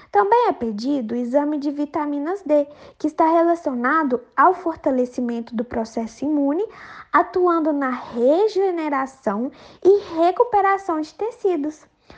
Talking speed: 115 wpm